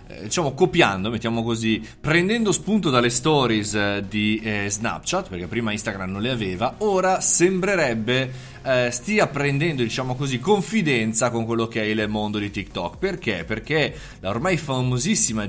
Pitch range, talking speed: 110-145 Hz, 145 wpm